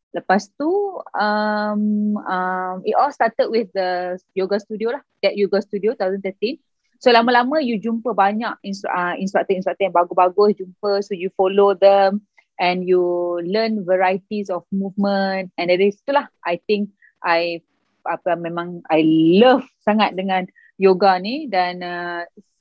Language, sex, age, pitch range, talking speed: Malay, female, 20-39, 185-220 Hz, 145 wpm